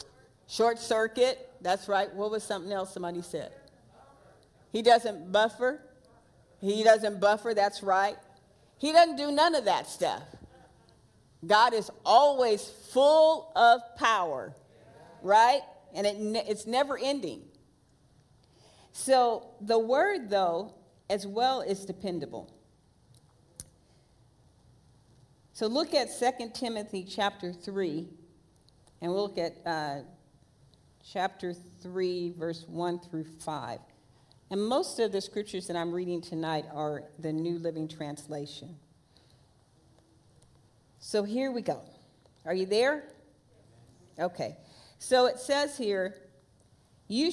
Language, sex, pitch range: English, female, 165-230 Hz